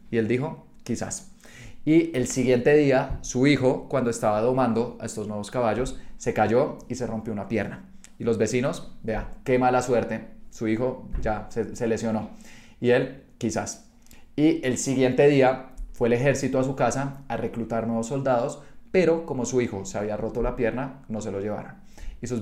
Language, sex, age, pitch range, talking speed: Spanish, male, 20-39, 115-135 Hz, 185 wpm